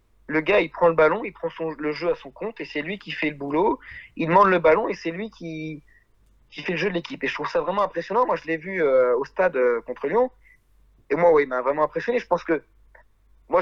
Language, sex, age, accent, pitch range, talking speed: French, male, 40-59, French, 150-230 Hz, 280 wpm